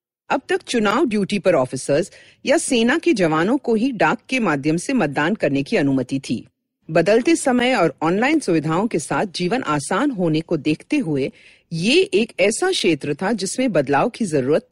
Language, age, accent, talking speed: Hindi, 50-69, native, 175 wpm